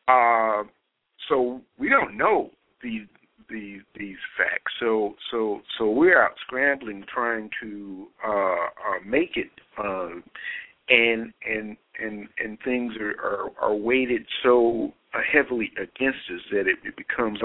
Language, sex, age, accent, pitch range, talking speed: English, male, 50-69, American, 100-130 Hz, 130 wpm